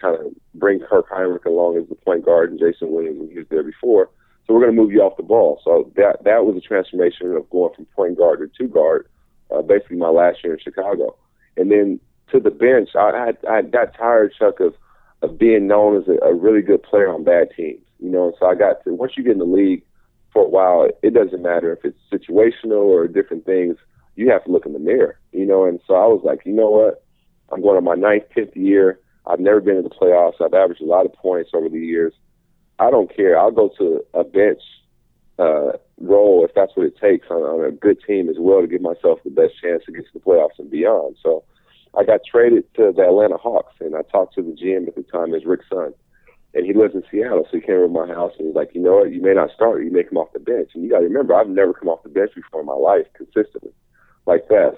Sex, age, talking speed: male, 40-59, 260 wpm